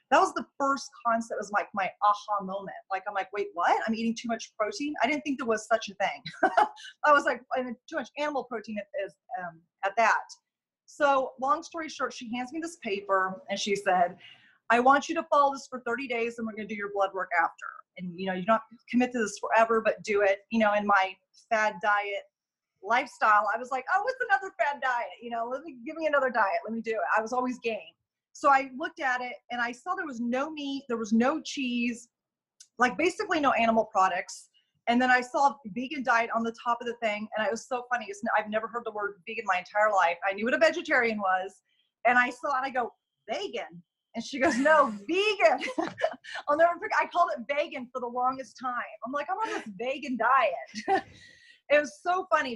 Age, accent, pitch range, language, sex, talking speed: 30-49, American, 215-295 Hz, English, female, 230 wpm